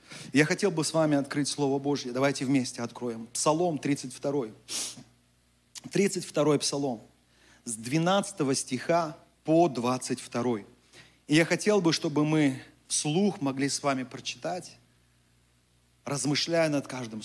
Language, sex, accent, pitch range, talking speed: Russian, male, native, 130-175 Hz, 120 wpm